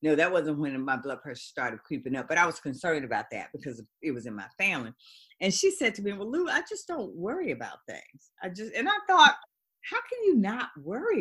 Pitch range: 140-235 Hz